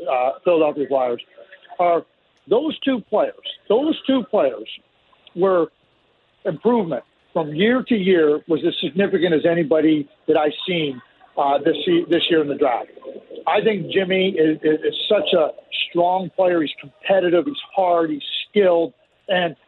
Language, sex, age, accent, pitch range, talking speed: English, male, 50-69, American, 155-200 Hz, 145 wpm